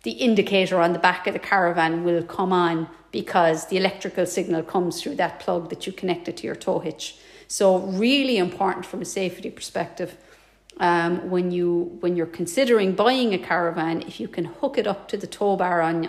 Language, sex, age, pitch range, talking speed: English, female, 40-59, 170-200 Hz, 205 wpm